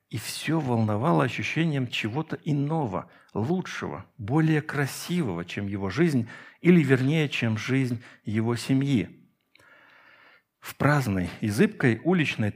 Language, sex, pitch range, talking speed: Russian, male, 105-160 Hz, 110 wpm